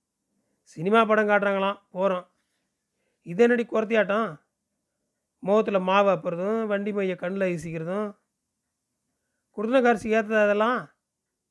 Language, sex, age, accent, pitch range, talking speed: Tamil, male, 30-49, native, 170-210 Hz, 95 wpm